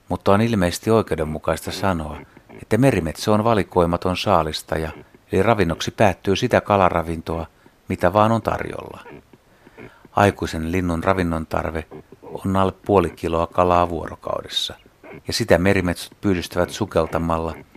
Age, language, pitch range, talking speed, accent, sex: 60-79, Finnish, 85-110 Hz, 115 wpm, native, male